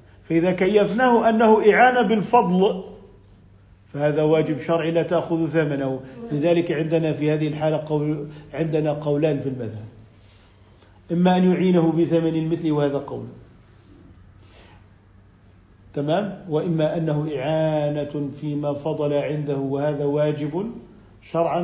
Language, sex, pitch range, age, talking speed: Arabic, male, 130-165 Hz, 50-69, 105 wpm